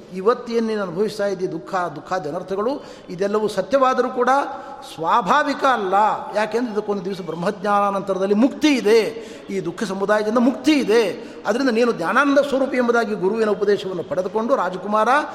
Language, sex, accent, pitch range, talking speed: Kannada, male, native, 190-245 Hz, 125 wpm